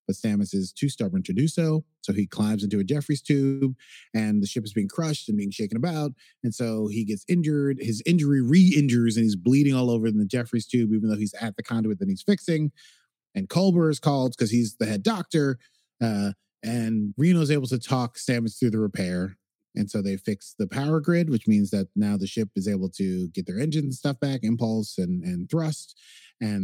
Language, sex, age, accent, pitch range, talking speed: English, male, 30-49, American, 110-145 Hz, 220 wpm